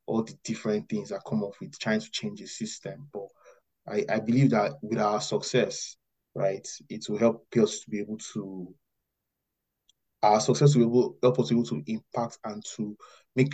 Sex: male